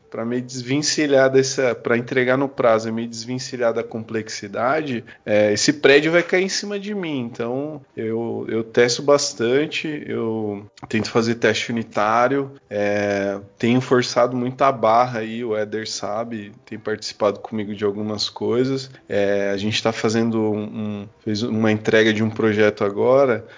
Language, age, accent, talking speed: Portuguese, 20-39, Brazilian, 155 wpm